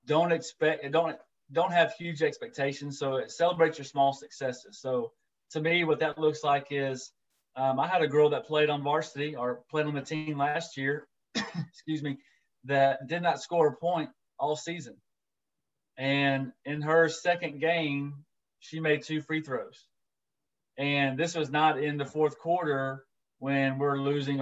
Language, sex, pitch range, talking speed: English, male, 135-160 Hz, 165 wpm